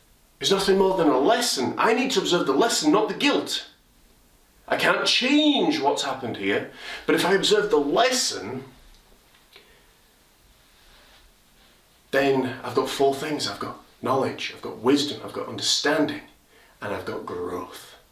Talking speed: 150 wpm